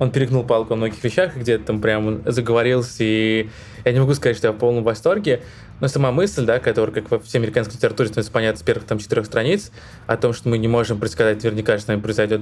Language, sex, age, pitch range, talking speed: Russian, male, 20-39, 110-125 Hz, 230 wpm